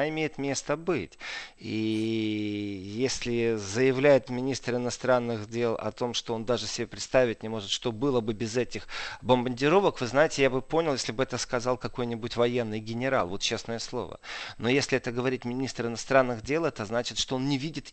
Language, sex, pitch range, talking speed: Russian, male, 105-130 Hz, 175 wpm